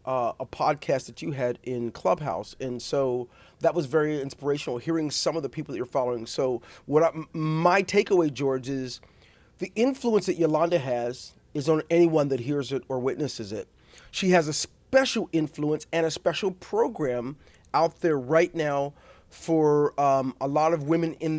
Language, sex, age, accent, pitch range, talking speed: English, male, 40-59, American, 140-190 Hz, 170 wpm